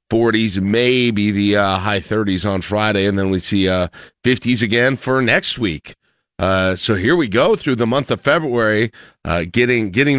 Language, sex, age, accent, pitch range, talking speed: English, male, 40-59, American, 100-125 Hz, 185 wpm